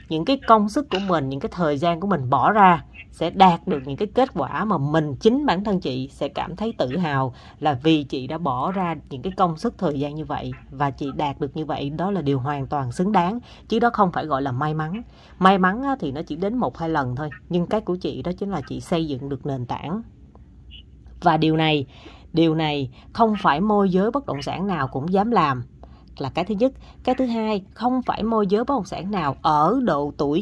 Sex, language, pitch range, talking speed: female, Vietnamese, 150-210 Hz, 245 wpm